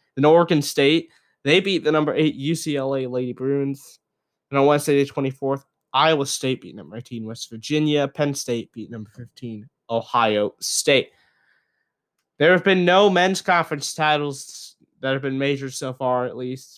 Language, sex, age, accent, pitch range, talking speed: English, male, 20-39, American, 125-160 Hz, 160 wpm